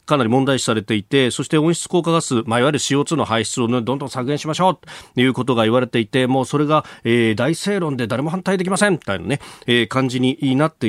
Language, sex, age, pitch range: Japanese, male, 40-59, 115-175 Hz